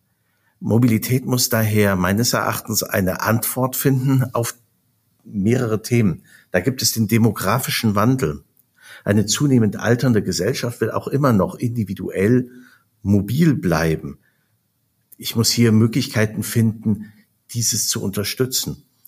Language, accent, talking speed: German, German, 115 wpm